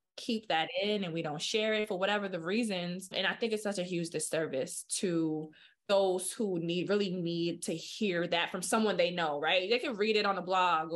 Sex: female